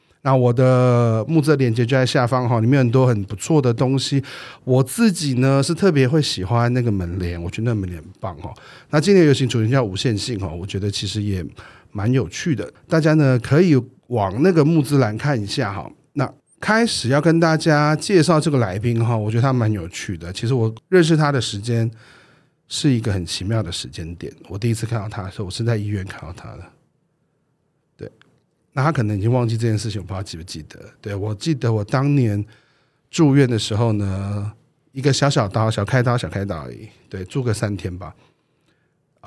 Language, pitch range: Chinese, 105-140 Hz